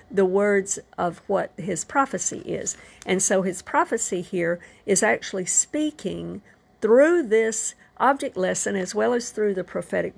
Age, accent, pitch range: 50-69, American, 185-230 Hz